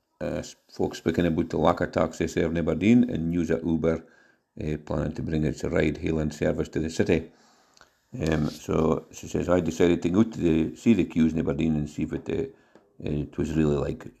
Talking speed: 215 wpm